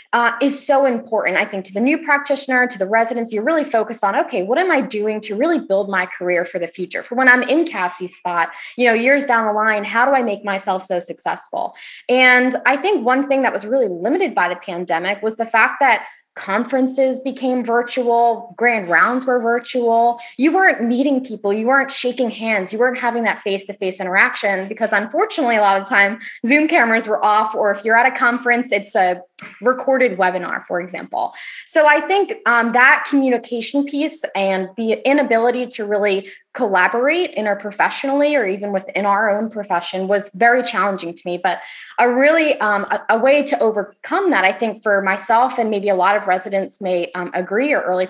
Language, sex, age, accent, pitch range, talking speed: English, female, 20-39, American, 200-260 Hz, 200 wpm